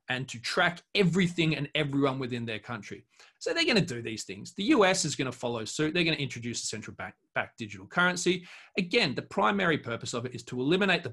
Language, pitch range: English, 125-170 Hz